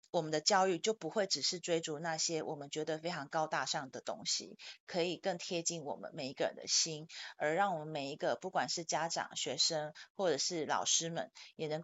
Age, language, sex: 30-49, Chinese, female